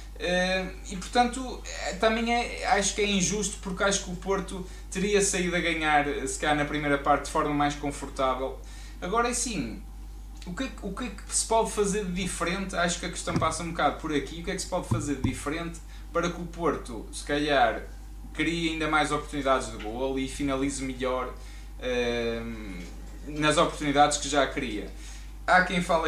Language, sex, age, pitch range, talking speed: Portuguese, male, 20-39, 140-195 Hz, 185 wpm